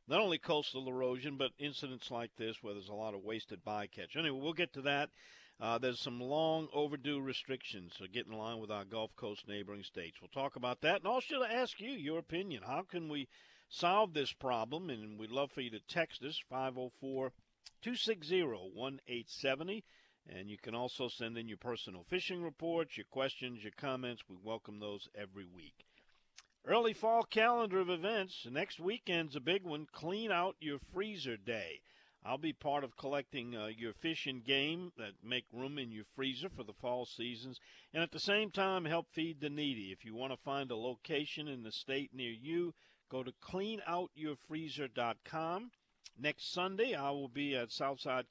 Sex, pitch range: male, 115-160 Hz